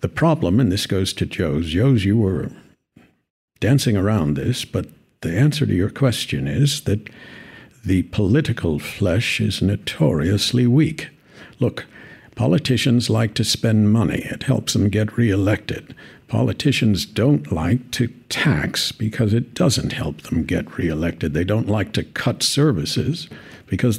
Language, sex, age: English, male, 60-79